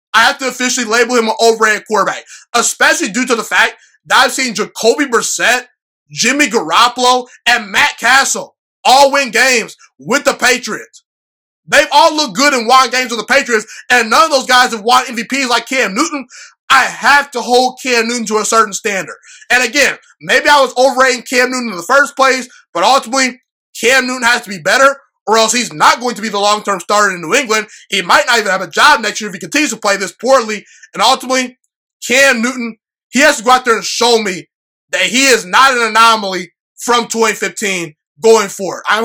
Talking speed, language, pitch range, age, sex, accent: 205 wpm, English, 220-260 Hz, 20-39, male, American